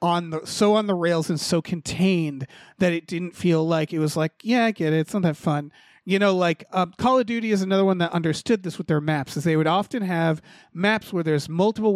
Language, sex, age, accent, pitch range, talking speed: English, male, 30-49, American, 165-205 Hz, 250 wpm